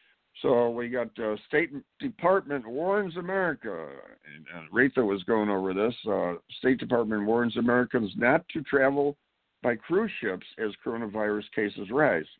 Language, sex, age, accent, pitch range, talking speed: English, male, 60-79, American, 95-125 Hz, 145 wpm